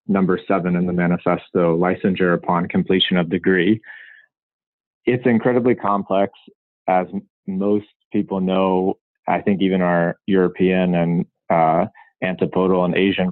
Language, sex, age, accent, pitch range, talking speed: English, male, 30-49, American, 90-100 Hz, 120 wpm